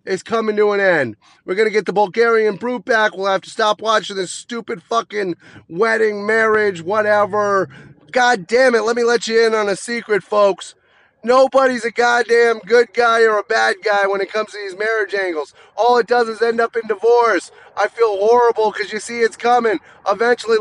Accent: American